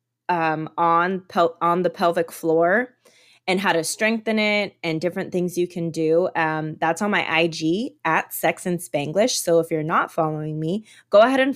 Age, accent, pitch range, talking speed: 20-39, American, 160-195 Hz, 185 wpm